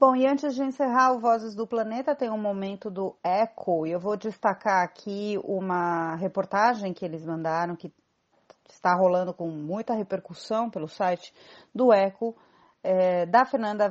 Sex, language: female, Portuguese